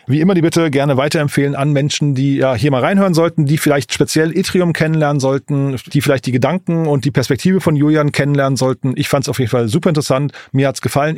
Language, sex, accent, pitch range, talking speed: German, male, German, 140-170 Hz, 230 wpm